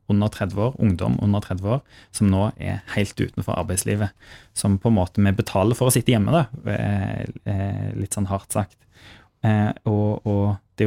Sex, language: male, English